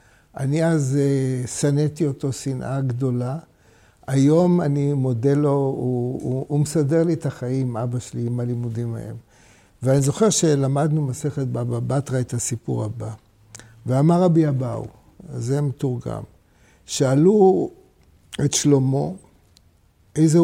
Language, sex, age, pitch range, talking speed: Hebrew, male, 60-79, 120-155 Hz, 120 wpm